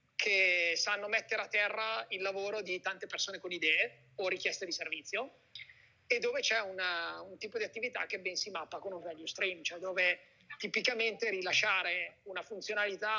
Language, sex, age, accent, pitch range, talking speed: Italian, male, 30-49, native, 185-225 Hz, 175 wpm